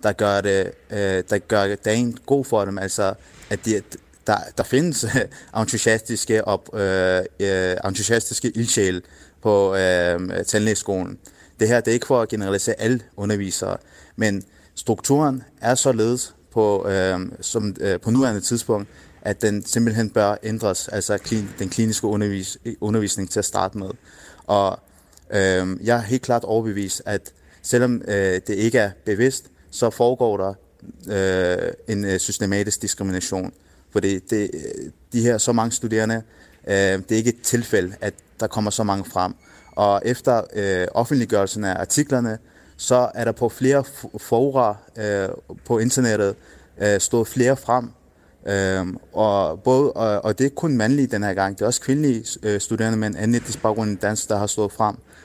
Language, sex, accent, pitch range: Danish, male, native, 100-120 Hz